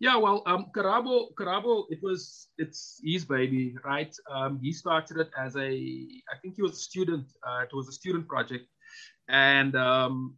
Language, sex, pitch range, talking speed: English, male, 130-160 Hz, 170 wpm